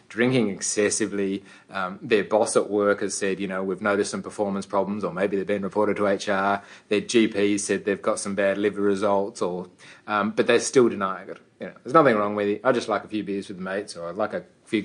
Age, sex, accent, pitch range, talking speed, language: 30-49, male, Australian, 100-120 Hz, 245 wpm, English